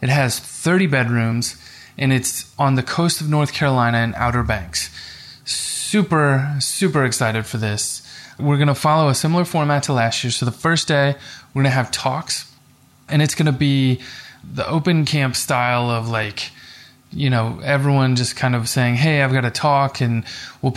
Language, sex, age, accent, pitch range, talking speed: English, male, 20-39, American, 120-145 Hz, 185 wpm